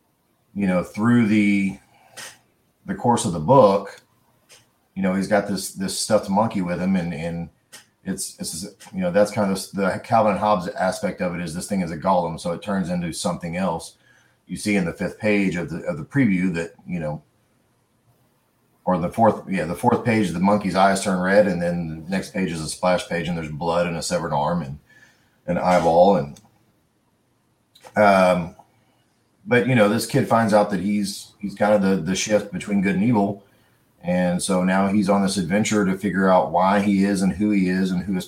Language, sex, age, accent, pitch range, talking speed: English, male, 40-59, American, 90-110 Hz, 205 wpm